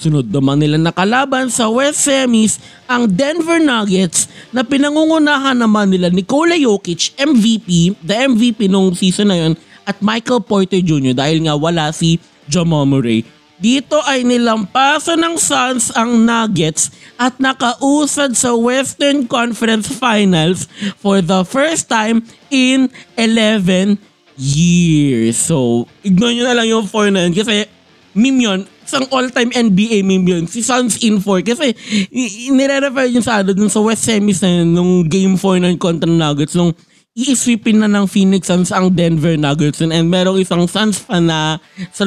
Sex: male